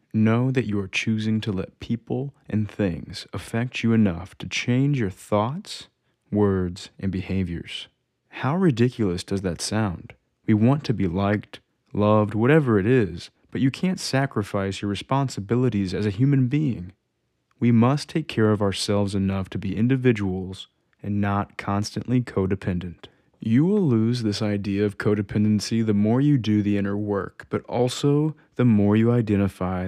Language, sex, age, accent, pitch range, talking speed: English, male, 20-39, American, 95-125 Hz, 155 wpm